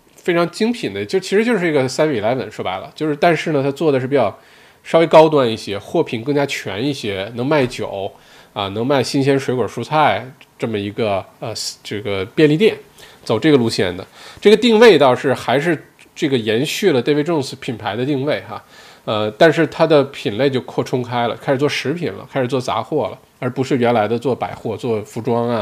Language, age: Chinese, 20-39